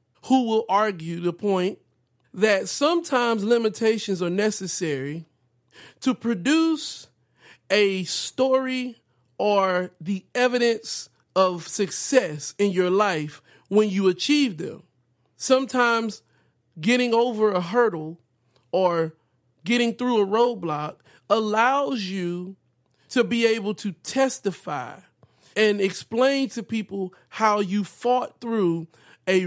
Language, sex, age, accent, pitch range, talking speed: English, male, 40-59, American, 175-235 Hz, 105 wpm